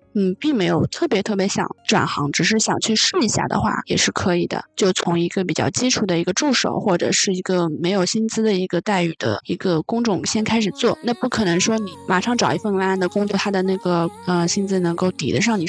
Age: 20-39